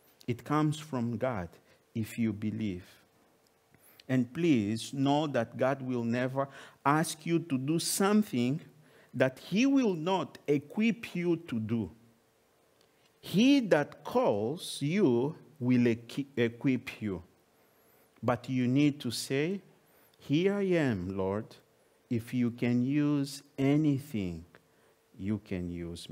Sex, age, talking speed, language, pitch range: male, 50-69, 115 wpm, English, 110-145 Hz